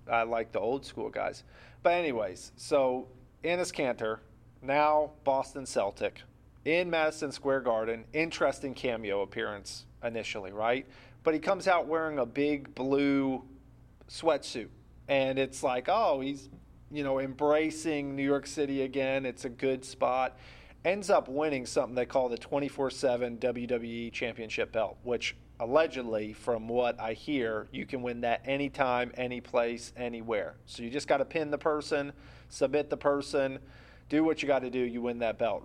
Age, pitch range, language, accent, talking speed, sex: 40-59, 120-145 Hz, English, American, 160 wpm, male